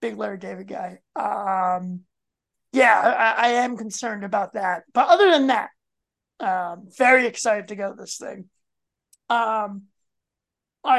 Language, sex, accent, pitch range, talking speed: English, male, American, 205-260 Hz, 140 wpm